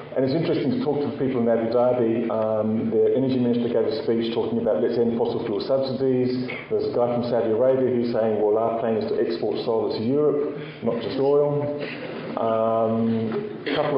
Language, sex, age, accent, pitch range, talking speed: English, male, 40-59, British, 110-130 Hz, 205 wpm